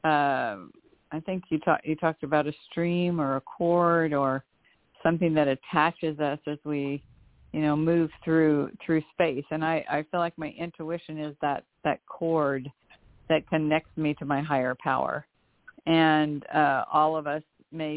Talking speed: 165 wpm